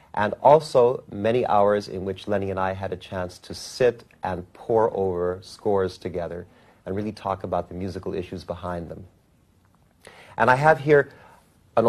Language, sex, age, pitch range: Chinese, male, 40-59, 95-115 Hz